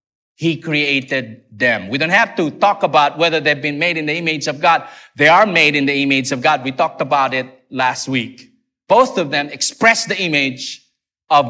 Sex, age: male, 50-69